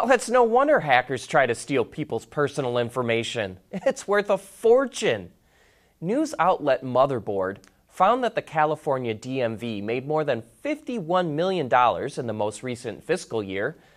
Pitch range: 120-190 Hz